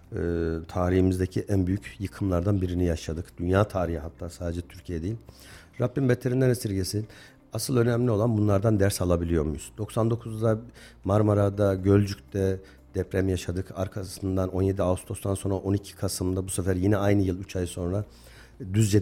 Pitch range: 90-110 Hz